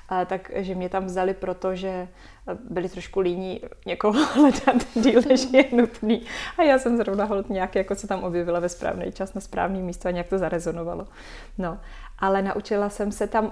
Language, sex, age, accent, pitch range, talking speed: Czech, female, 20-39, native, 185-200 Hz, 180 wpm